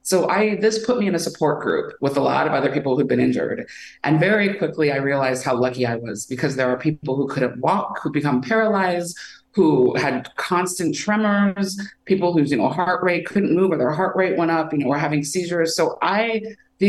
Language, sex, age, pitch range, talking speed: English, female, 30-49, 130-185 Hz, 225 wpm